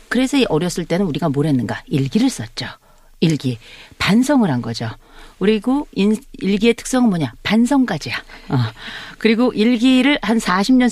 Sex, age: female, 40-59